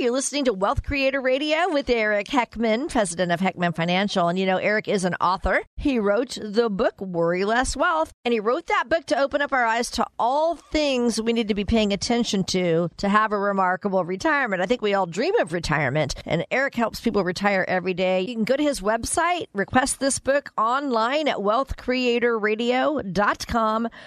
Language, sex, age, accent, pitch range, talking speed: English, female, 40-59, American, 195-255 Hz, 195 wpm